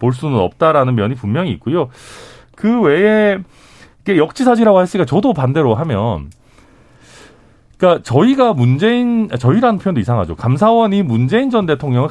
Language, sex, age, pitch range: Korean, male, 40-59, 115-195 Hz